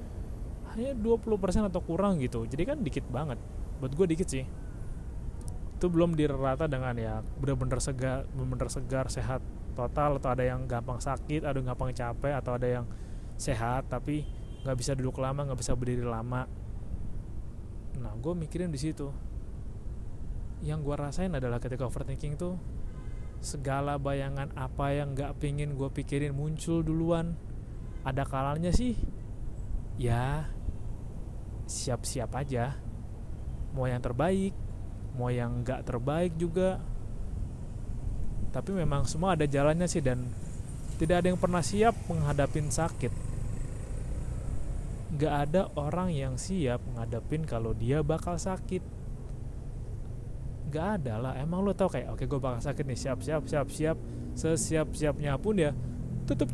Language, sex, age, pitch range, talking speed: Indonesian, male, 20-39, 115-150 Hz, 130 wpm